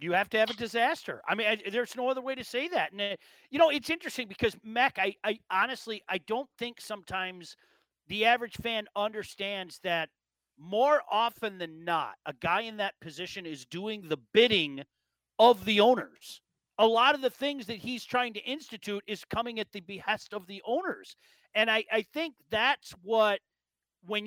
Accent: American